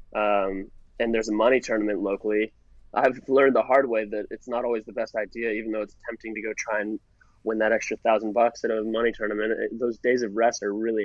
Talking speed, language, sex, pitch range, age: 235 wpm, English, male, 105-120 Hz, 20-39